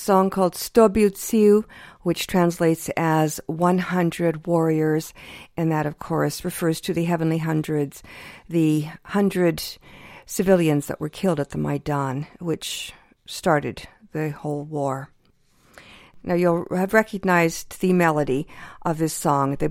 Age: 50-69